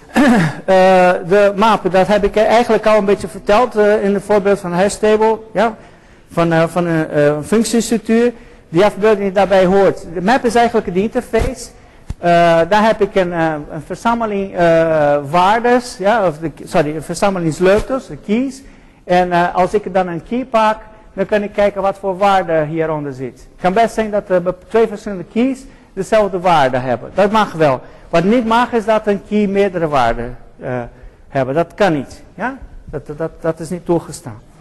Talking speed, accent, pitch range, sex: 180 wpm, Dutch, 170-215 Hz, male